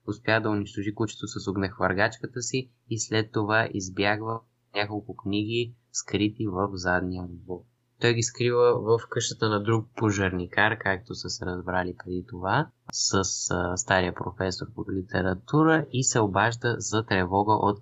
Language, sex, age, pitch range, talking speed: Bulgarian, male, 20-39, 100-115 Hz, 145 wpm